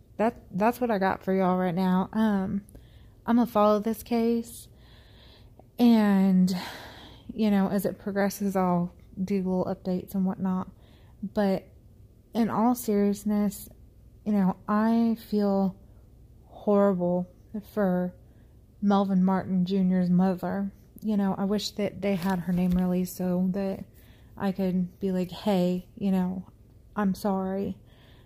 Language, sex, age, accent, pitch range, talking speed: English, female, 30-49, American, 180-200 Hz, 130 wpm